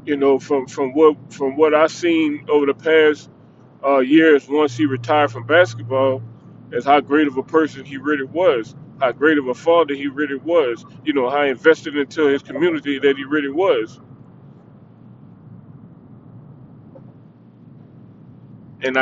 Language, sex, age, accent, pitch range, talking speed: English, male, 30-49, American, 135-170 Hz, 150 wpm